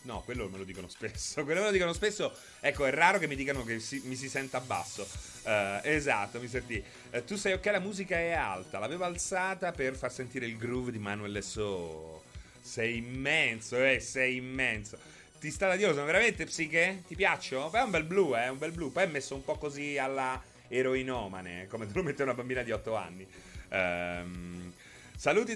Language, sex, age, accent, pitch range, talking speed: Italian, male, 30-49, native, 120-180 Hz, 205 wpm